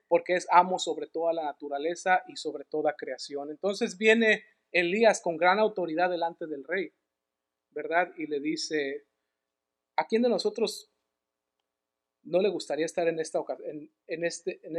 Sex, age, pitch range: male, 40-59, 150-200 Hz